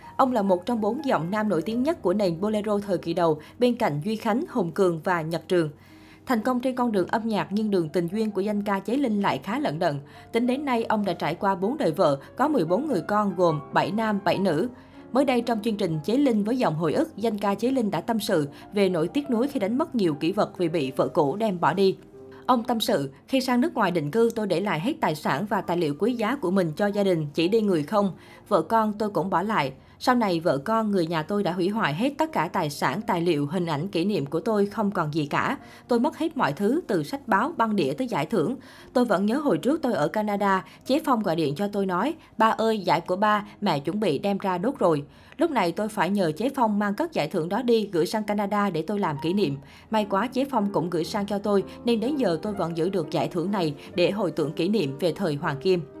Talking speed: 270 wpm